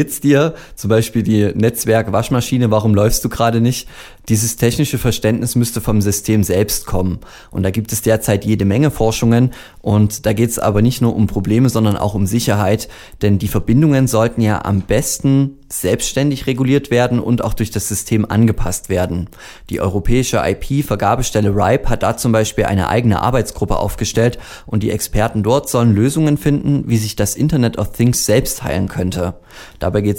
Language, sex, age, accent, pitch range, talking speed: German, male, 20-39, German, 105-125 Hz, 170 wpm